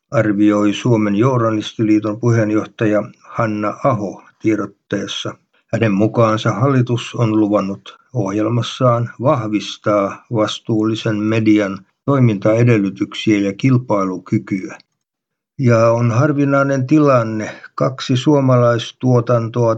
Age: 60-79